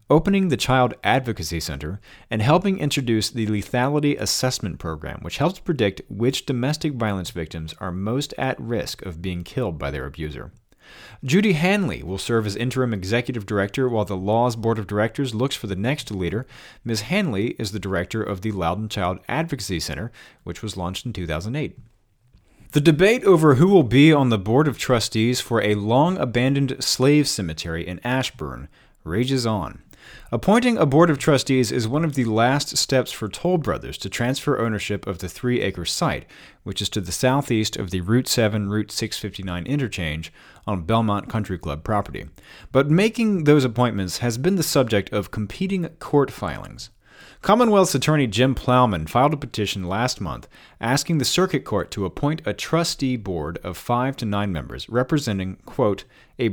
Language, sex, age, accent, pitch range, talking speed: English, male, 40-59, American, 100-140 Hz, 170 wpm